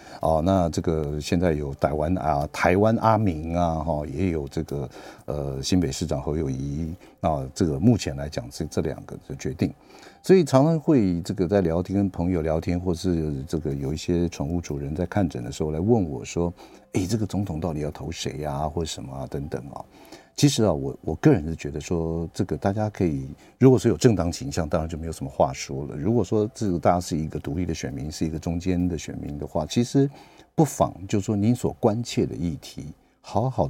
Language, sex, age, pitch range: Chinese, male, 50-69, 80-100 Hz